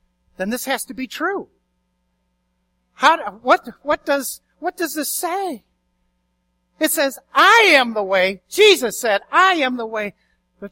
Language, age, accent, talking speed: English, 60-79, American, 150 wpm